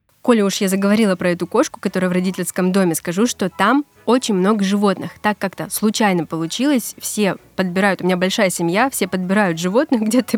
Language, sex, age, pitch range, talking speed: Russian, female, 20-39, 185-230 Hz, 180 wpm